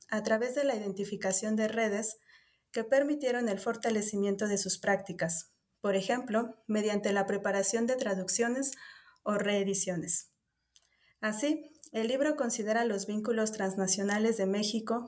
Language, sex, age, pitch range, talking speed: Spanish, female, 30-49, 195-235 Hz, 125 wpm